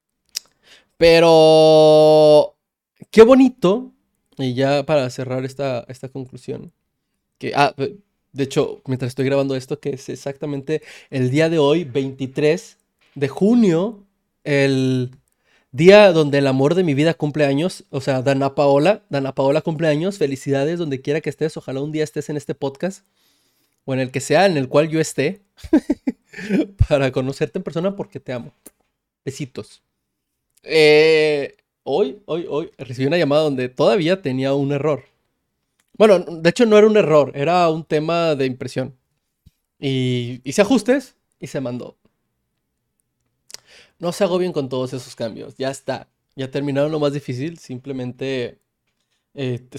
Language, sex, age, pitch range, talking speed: Spanish, male, 20-39, 135-165 Hz, 150 wpm